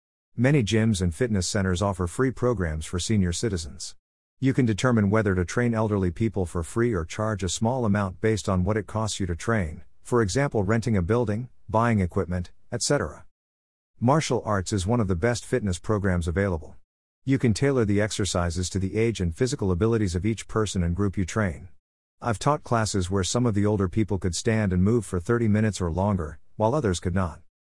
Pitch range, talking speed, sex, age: 90-115 Hz, 200 wpm, male, 50-69